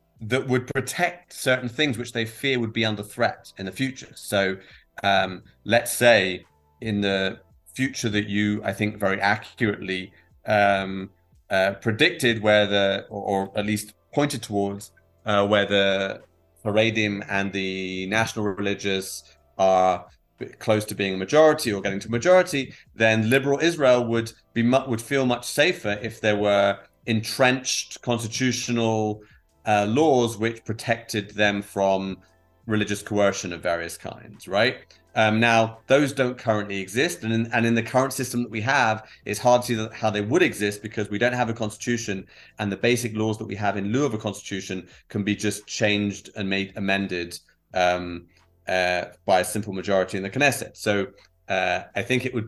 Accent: British